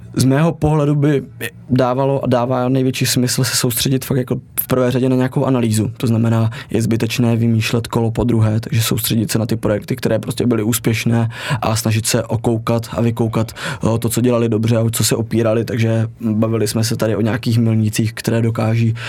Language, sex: Czech, male